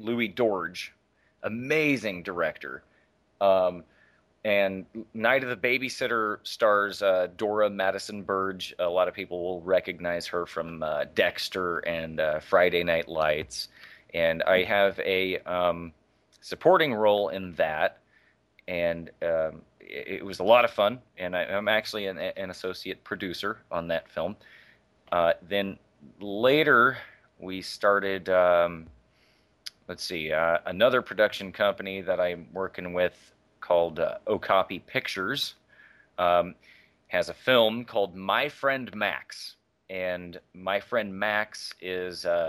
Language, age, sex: English, 30-49, male